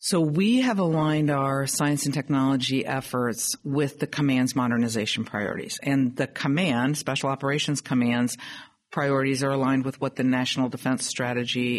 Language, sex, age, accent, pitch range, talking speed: English, female, 50-69, American, 125-150 Hz, 150 wpm